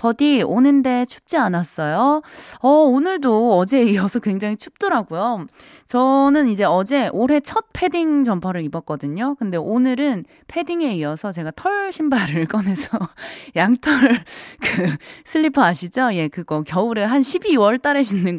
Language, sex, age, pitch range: Korean, female, 20-39, 180-275 Hz